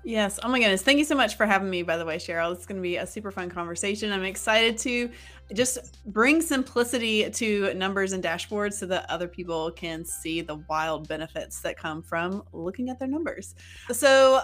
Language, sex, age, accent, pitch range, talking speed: English, female, 30-49, American, 185-250 Hz, 205 wpm